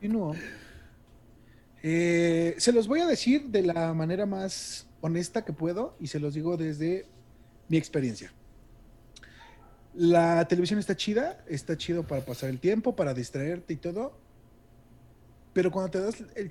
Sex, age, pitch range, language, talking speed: male, 40-59, 140-185 Hz, Spanish, 150 wpm